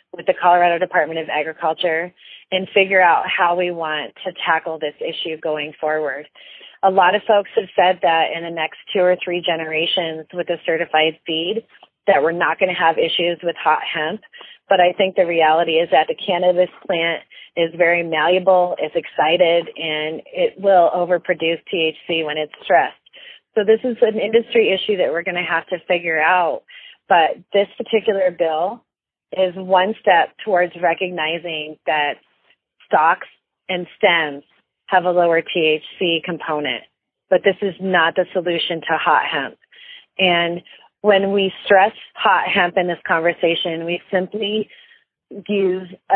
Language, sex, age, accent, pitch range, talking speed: English, female, 30-49, American, 165-195 Hz, 160 wpm